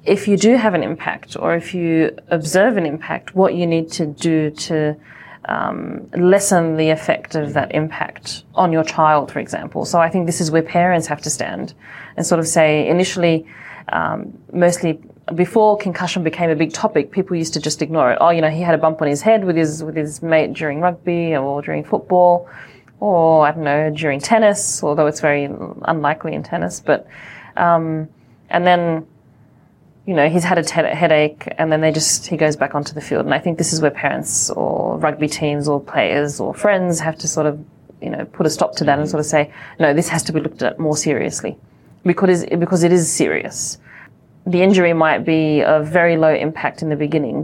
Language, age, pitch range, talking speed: English, 30-49, 150-170 Hz, 210 wpm